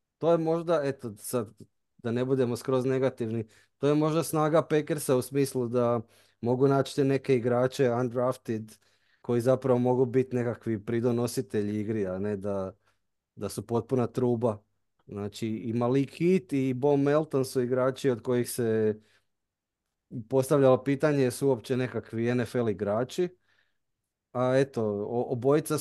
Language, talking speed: Croatian, 135 wpm